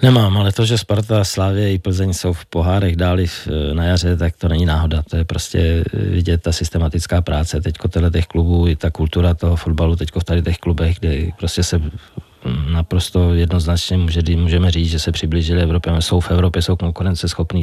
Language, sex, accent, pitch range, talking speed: Czech, male, native, 80-90 Hz, 195 wpm